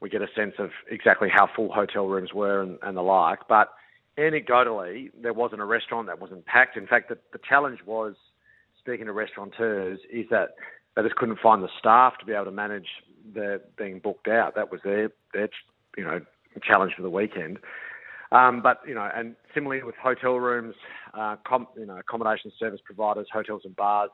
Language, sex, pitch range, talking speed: English, male, 105-125 Hz, 195 wpm